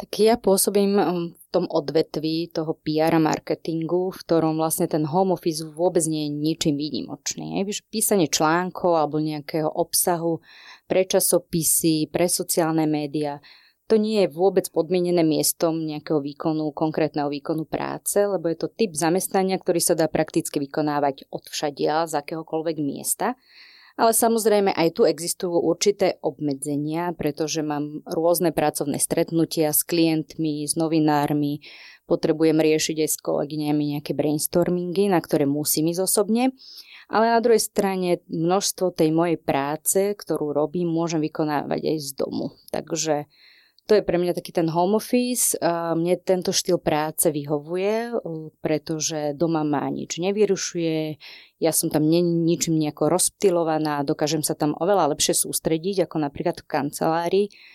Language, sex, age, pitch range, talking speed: Slovak, female, 30-49, 155-180 Hz, 135 wpm